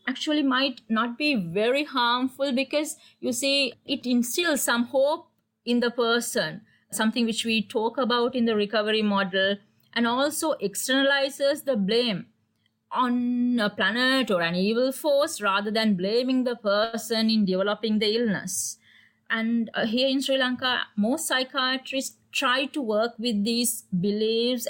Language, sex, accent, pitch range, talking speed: English, female, Indian, 210-255 Hz, 145 wpm